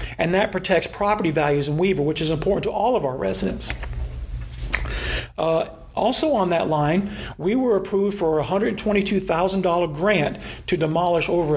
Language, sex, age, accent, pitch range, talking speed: English, male, 50-69, American, 155-205 Hz, 150 wpm